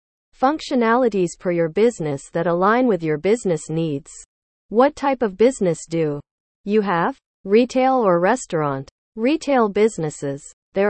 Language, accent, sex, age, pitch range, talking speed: English, American, female, 40-59, 160-235 Hz, 125 wpm